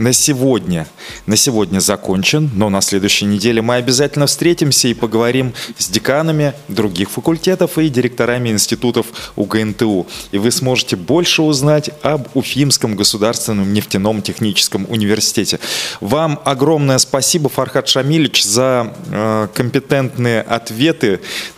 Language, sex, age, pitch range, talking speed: Russian, male, 20-39, 105-135 Hz, 115 wpm